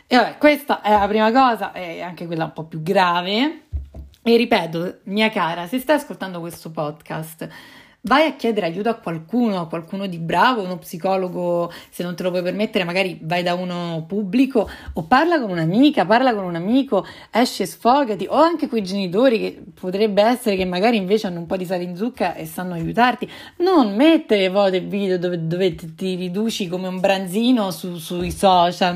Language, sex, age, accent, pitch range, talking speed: Italian, female, 30-49, native, 175-230 Hz, 190 wpm